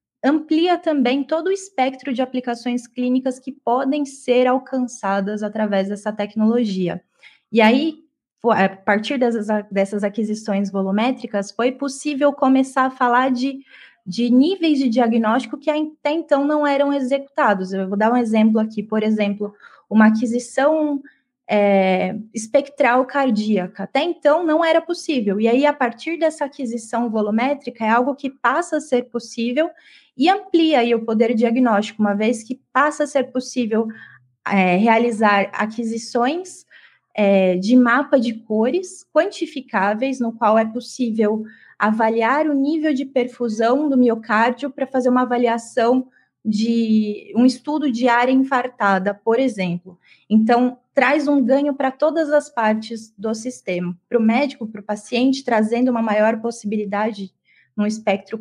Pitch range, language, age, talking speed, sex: 215-275 Hz, Portuguese, 20-39, 140 wpm, female